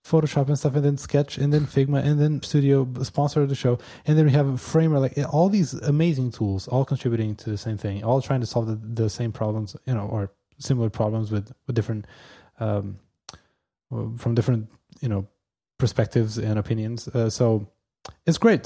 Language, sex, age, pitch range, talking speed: English, male, 20-39, 110-135 Hz, 195 wpm